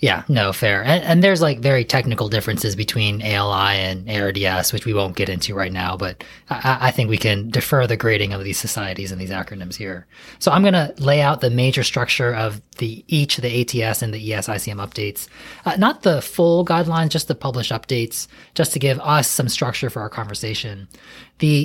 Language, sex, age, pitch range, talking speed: English, male, 20-39, 110-145 Hz, 210 wpm